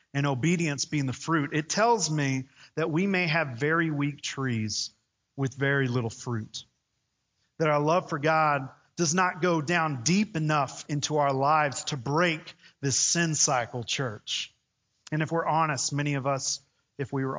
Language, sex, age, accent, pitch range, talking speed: English, male, 30-49, American, 130-160 Hz, 170 wpm